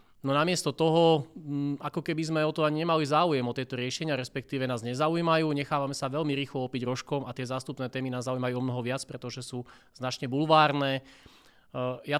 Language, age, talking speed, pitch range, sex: Slovak, 30-49, 180 wpm, 125-140 Hz, male